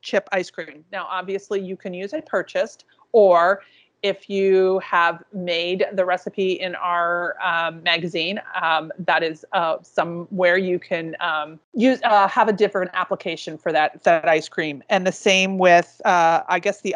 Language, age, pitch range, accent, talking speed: English, 40-59, 175-200 Hz, American, 175 wpm